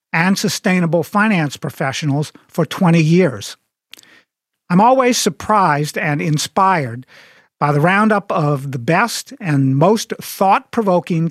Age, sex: 50-69, male